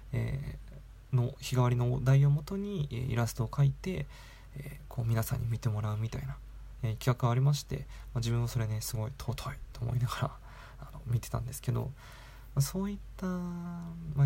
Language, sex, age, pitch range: Japanese, male, 20-39, 115-140 Hz